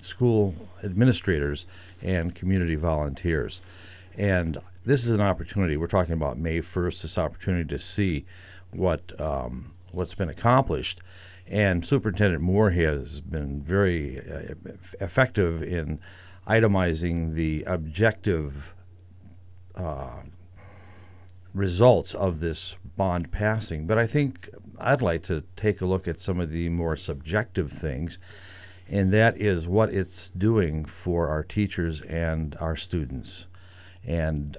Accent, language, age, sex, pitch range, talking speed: American, English, 60-79, male, 85-105 Hz, 125 wpm